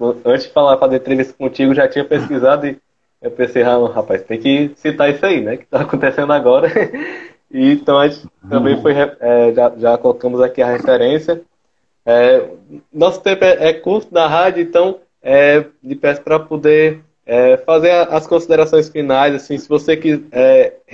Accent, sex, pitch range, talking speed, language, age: Brazilian, male, 135-165 Hz, 165 wpm, Portuguese, 20-39